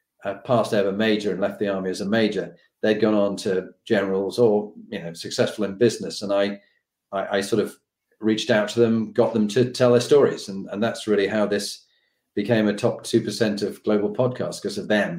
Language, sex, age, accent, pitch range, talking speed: English, male, 40-59, British, 105-125 Hz, 215 wpm